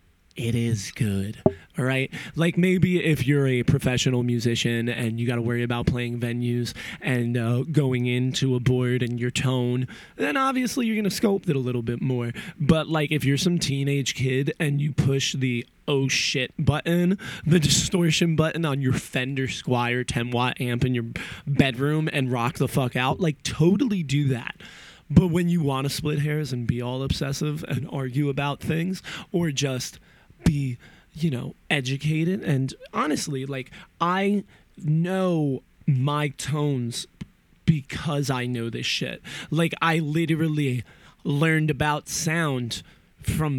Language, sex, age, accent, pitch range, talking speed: English, male, 20-39, American, 125-160 Hz, 155 wpm